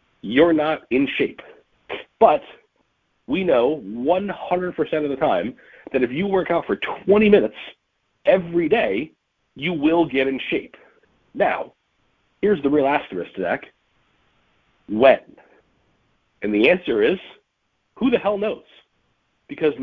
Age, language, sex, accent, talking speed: 40-59, English, male, American, 125 wpm